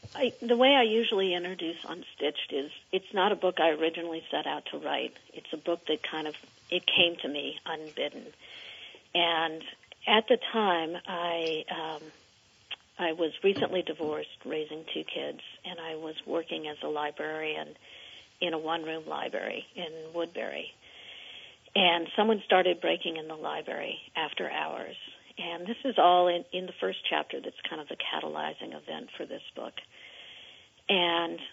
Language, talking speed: English, 155 wpm